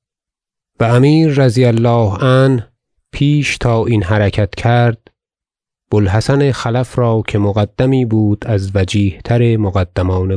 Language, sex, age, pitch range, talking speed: Persian, male, 30-49, 95-120 Hz, 110 wpm